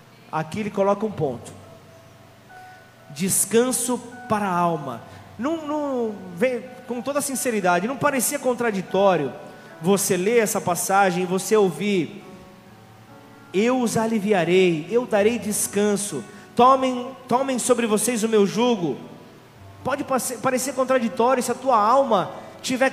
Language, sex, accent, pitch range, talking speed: Portuguese, male, Brazilian, 215-280 Hz, 120 wpm